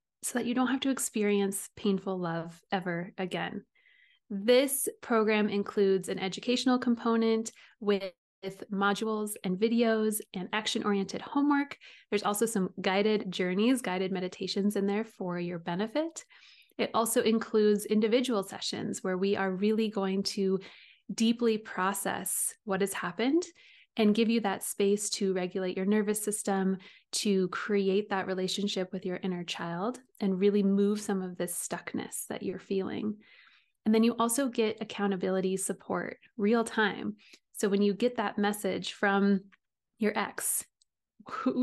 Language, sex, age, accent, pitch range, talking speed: English, female, 20-39, American, 195-225 Hz, 145 wpm